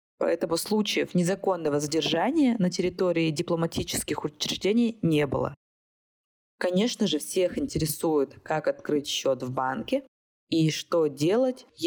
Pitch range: 150-205 Hz